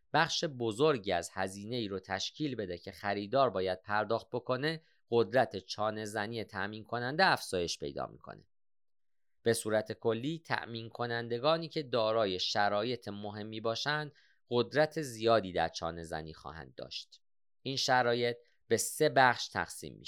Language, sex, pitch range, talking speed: Persian, male, 100-135 Hz, 130 wpm